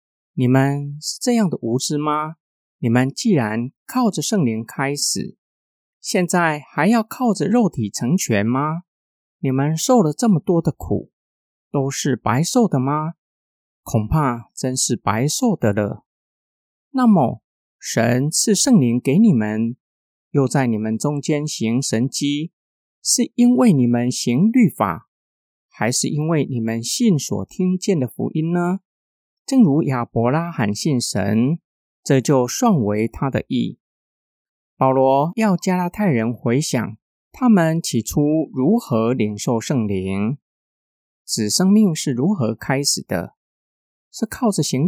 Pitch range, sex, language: 120-185 Hz, male, Chinese